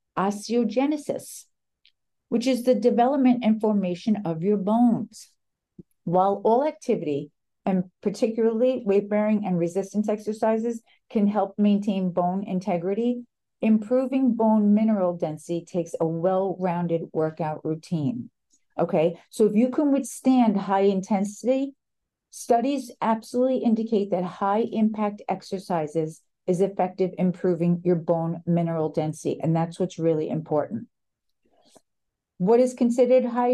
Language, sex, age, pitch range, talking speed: English, female, 50-69, 180-240 Hz, 115 wpm